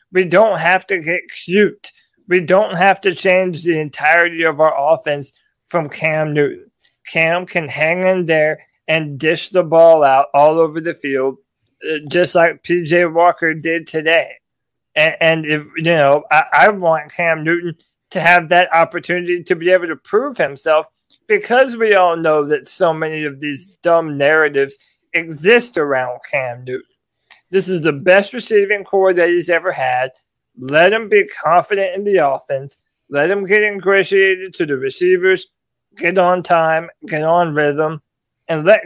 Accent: American